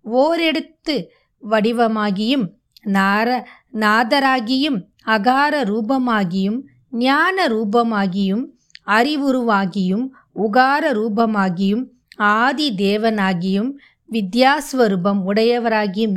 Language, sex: Tamil, female